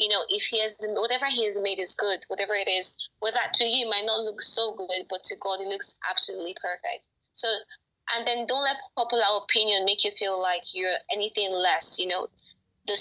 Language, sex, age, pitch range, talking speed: English, female, 10-29, 195-240 Hz, 215 wpm